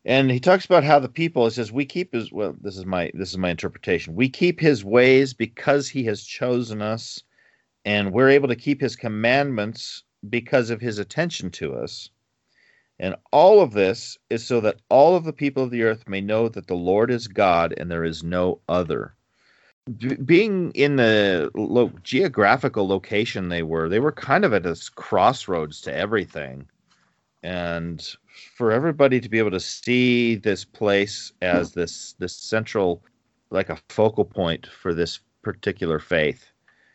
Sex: male